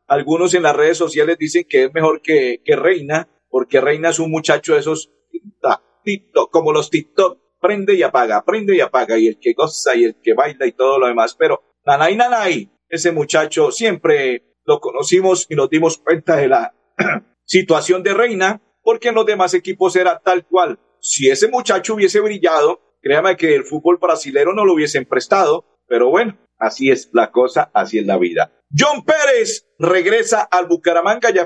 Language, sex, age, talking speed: Spanish, male, 50-69, 185 wpm